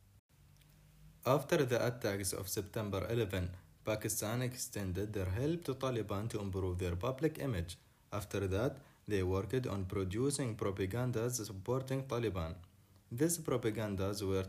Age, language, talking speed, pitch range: 30-49, English, 120 wpm, 95-125 Hz